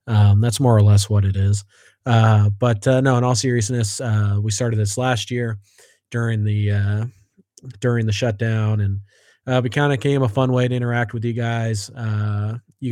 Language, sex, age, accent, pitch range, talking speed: English, male, 20-39, American, 105-120 Hz, 200 wpm